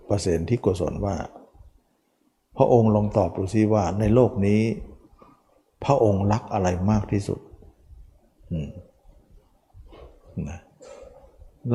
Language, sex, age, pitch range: Thai, male, 60-79, 90-115 Hz